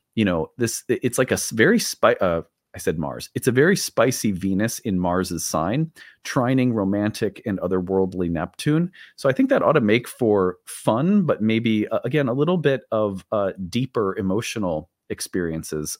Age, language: 30-49, English